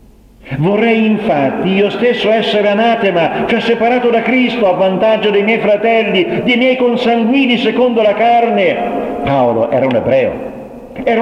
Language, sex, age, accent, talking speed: Italian, male, 50-69, native, 140 wpm